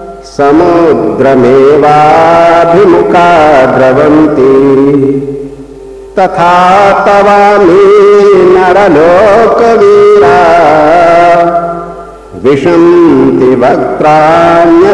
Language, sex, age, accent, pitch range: Hindi, male, 60-79, native, 135-180 Hz